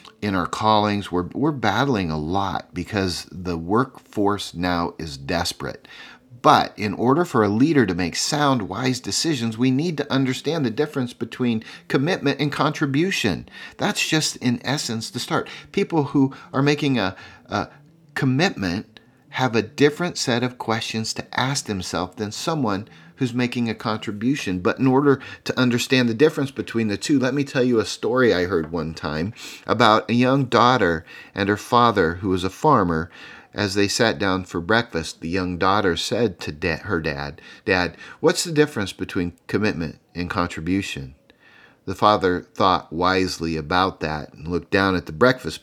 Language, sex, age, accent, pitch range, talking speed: English, male, 40-59, American, 95-135 Hz, 165 wpm